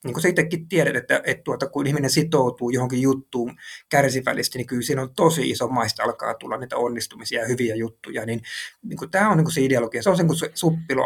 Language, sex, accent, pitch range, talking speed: Finnish, male, native, 125-160 Hz, 215 wpm